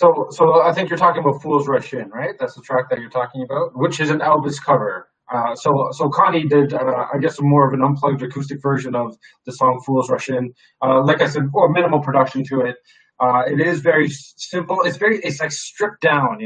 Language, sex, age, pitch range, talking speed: English, male, 20-39, 130-155 Hz, 220 wpm